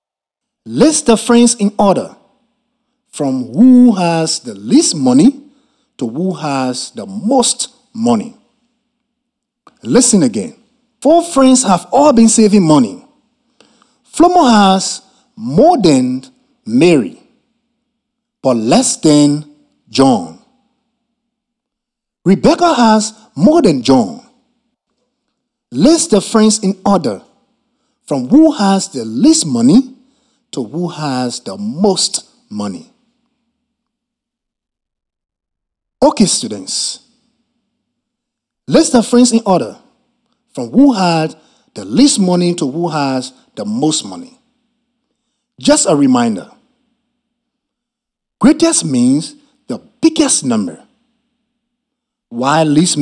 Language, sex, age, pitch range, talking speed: English, male, 50-69, 220-255 Hz, 95 wpm